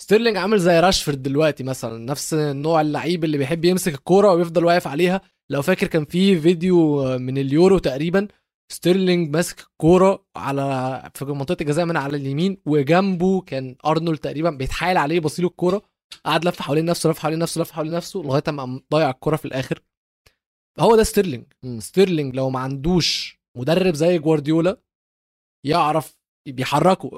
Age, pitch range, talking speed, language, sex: 20-39, 145-185 Hz, 155 wpm, Arabic, male